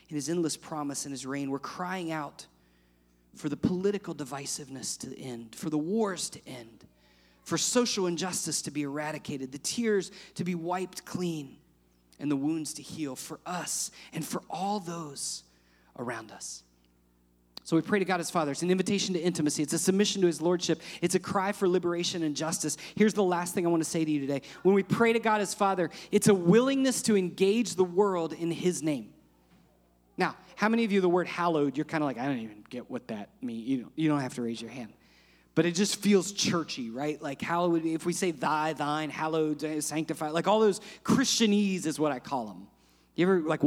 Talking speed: 210 wpm